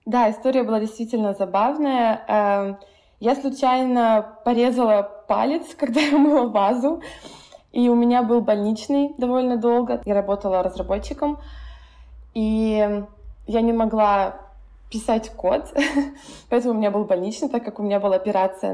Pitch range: 205-245 Hz